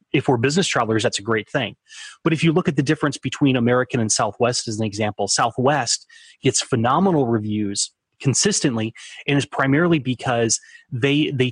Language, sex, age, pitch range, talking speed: English, male, 30-49, 115-140 Hz, 170 wpm